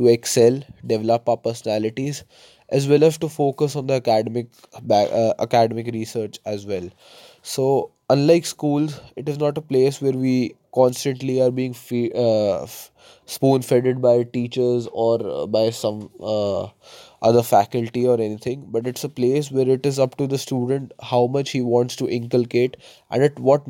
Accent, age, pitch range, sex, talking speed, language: Indian, 20-39, 120-140 Hz, male, 170 wpm, English